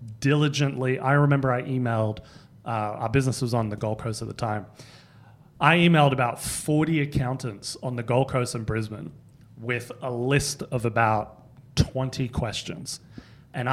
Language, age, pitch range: English, 30-49, 115-145 Hz